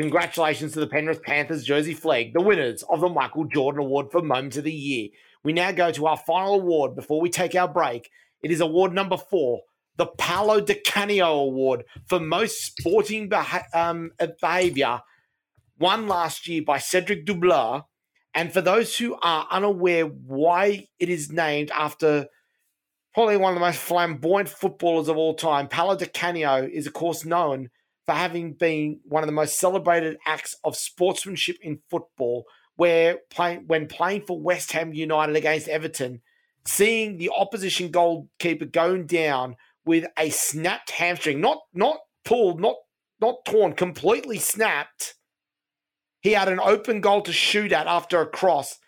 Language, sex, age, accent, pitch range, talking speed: English, male, 30-49, Australian, 155-180 Hz, 160 wpm